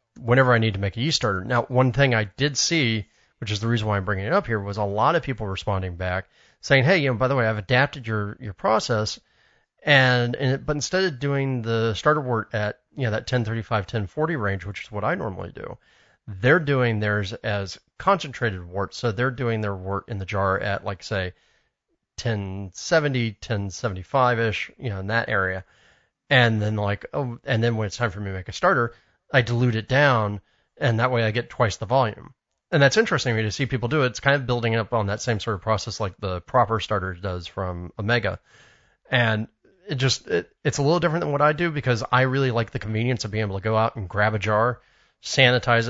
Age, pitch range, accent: 30-49, 100-125 Hz, American